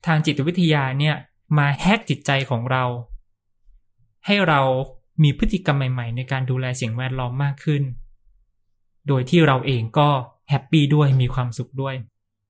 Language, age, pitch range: Thai, 20-39, 115-150 Hz